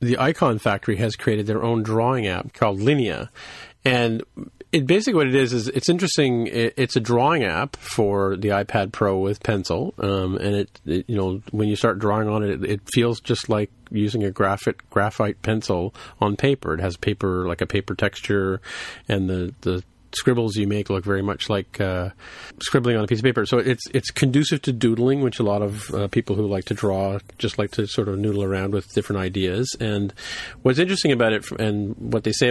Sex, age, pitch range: male, 40-59, 100-120 Hz